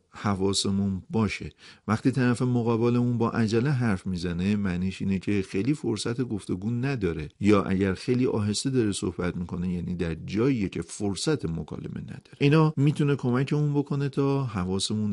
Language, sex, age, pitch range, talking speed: Persian, male, 50-69, 90-115 Hz, 145 wpm